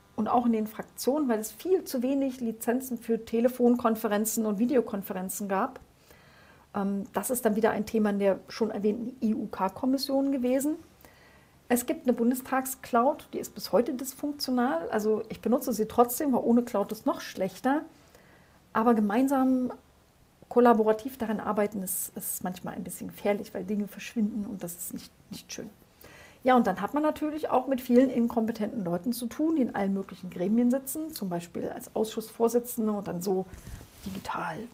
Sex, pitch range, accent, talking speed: female, 205-250 Hz, German, 165 wpm